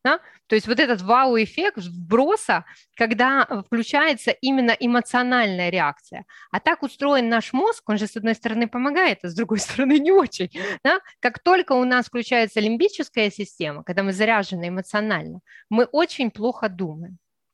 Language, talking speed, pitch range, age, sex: Ukrainian, 145 wpm, 200-260 Hz, 20-39, female